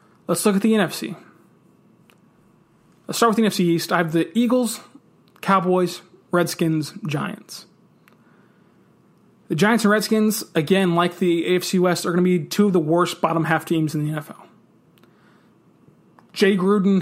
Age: 20-39